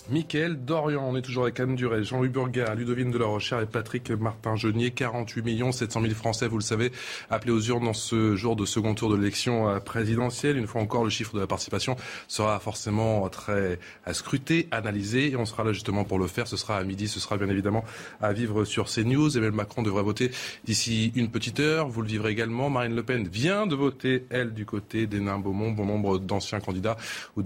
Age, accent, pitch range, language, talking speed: 20-39, French, 105-125 Hz, French, 210 wpm